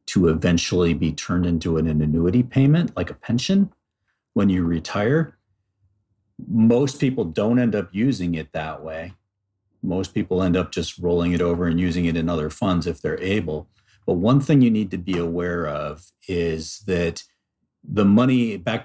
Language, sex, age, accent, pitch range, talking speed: English, male, 40-59, American, 80-105 Hz, 170 wpm